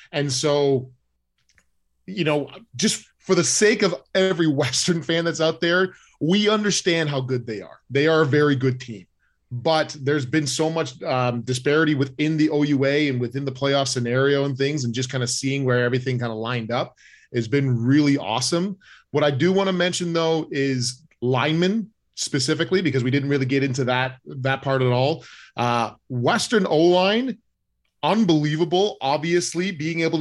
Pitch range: 130-165 Hz